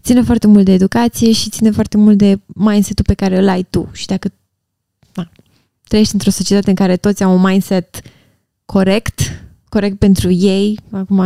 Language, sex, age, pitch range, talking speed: Romanian, female, 20-39, 185-225 Hz, 170 wpm